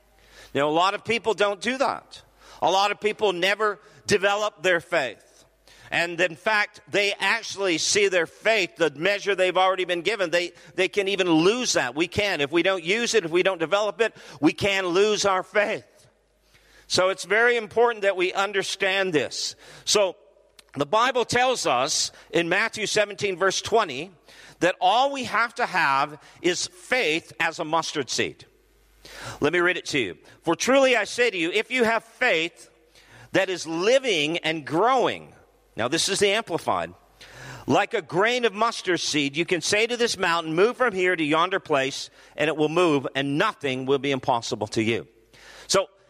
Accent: American